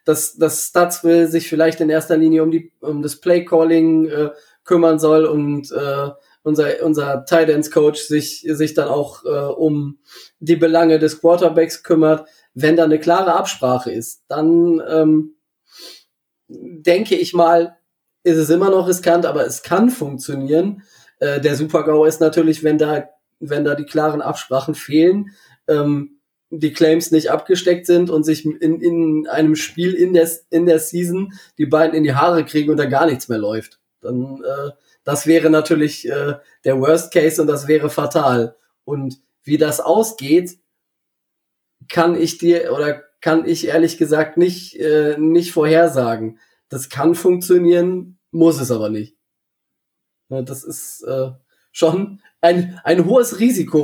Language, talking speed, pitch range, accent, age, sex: German, 155 wpm, 150-170 Hz, German, 20-39, male